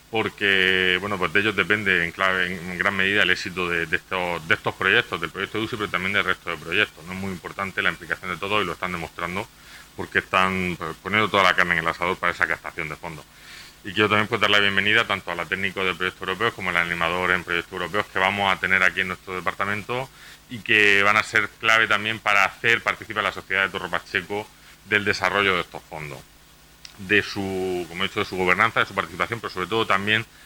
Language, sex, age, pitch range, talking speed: Spanish, male, 40-59, 90-105 Hz, 230 wpm